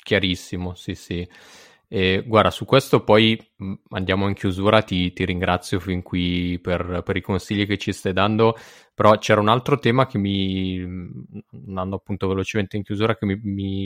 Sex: male